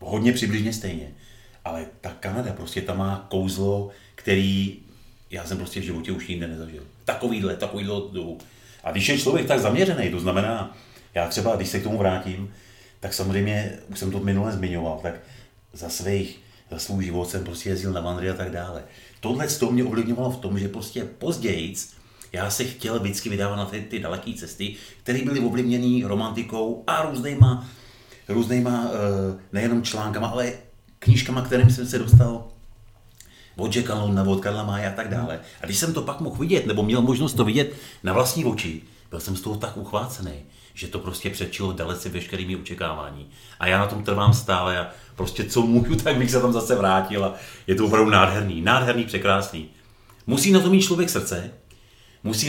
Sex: male